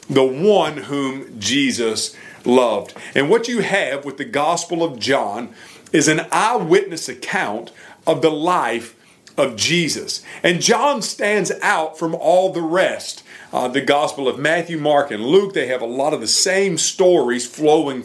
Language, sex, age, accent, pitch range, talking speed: English, male, 40-59, American, 130-185 Hz, 160 wpm